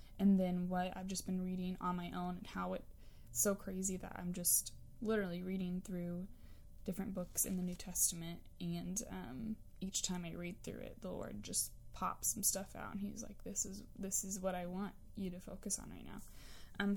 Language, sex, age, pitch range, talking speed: English, female, 20-39, 185-220 Hz, 210 wpm